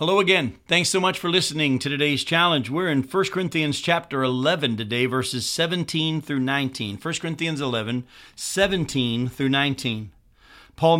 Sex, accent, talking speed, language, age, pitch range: male, American, 155 wpm, English, 50-69, 125-165 Hz